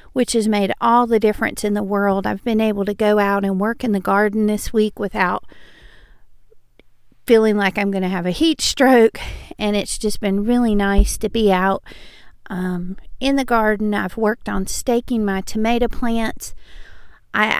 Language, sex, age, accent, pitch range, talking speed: English, female, 40-59, American, 200-240 Hz, 175 wpm